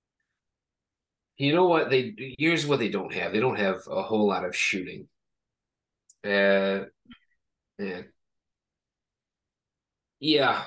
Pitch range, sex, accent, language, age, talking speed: 105-135 Hz, male, American, English, 30-49, 110 wpm